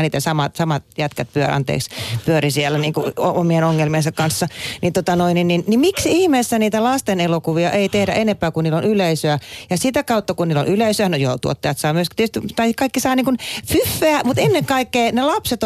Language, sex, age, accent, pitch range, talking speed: Finnish, female, 30-49, native, 150-195 Hz, 210 wpm